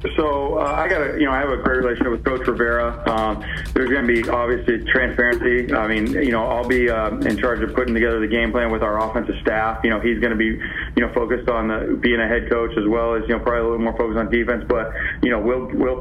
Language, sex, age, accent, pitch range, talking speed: English, male, 30-49, American, 120-140 Hz, 260 wpm